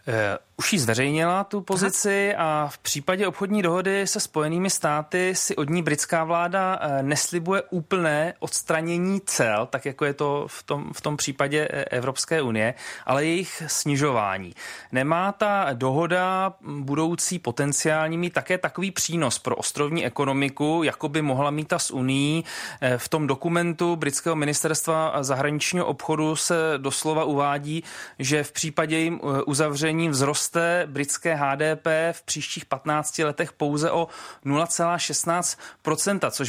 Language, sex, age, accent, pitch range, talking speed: Czech, male, 30-49, native, 140-170 Hz, 130 wpm